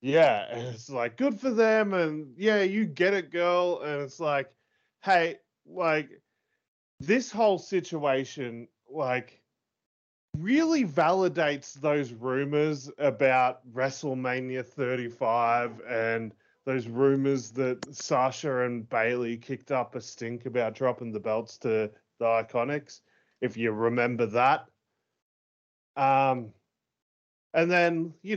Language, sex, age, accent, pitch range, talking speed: English, male, 20-39, Australian, 120-155 Hz, 115 wpm